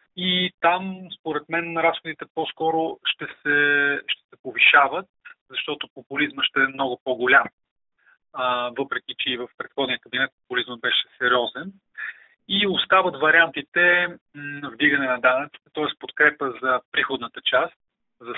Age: 30-49